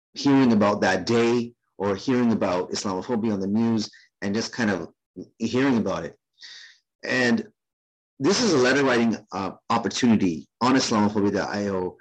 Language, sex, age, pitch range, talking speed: English, male, 30-49, 105-165 Hz, 140 wpm